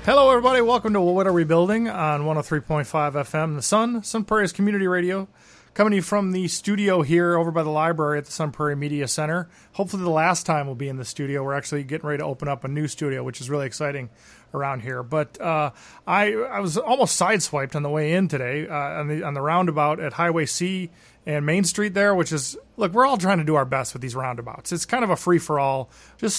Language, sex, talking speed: English, male, 235 wpm